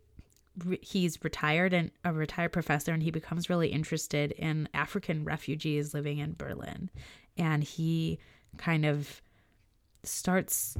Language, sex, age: English, female, 20-39